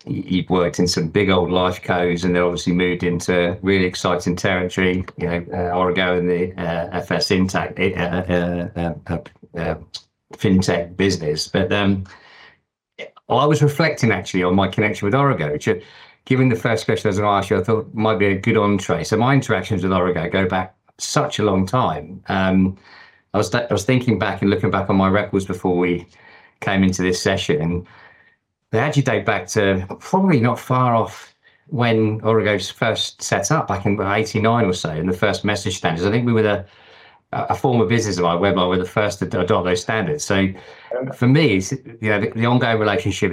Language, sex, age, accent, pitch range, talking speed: English, male, 40-59, British, 90-110 Hz, 200 wpm